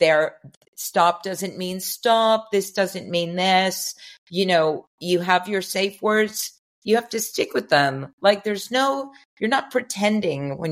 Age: 50-69